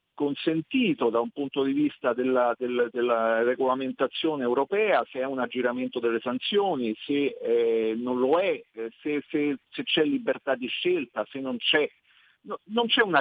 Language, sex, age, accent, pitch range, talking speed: Italian, male, 50-69, native, 120-160 Hz, 165 wpm